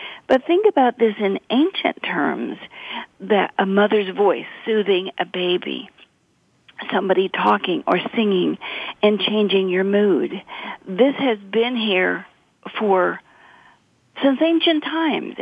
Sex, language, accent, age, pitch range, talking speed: female, English, American, 50-69, 195-260 Hz, 115 wpm